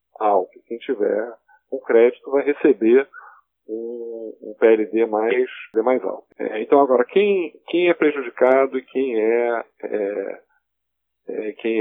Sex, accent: male, Brazilian